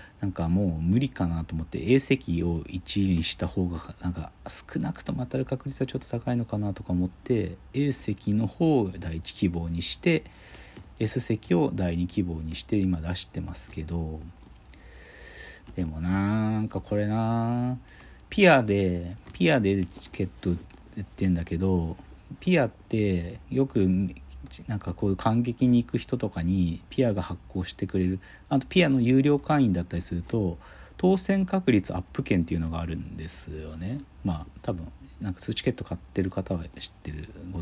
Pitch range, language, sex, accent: 85-125 Hz, Japanese, male, native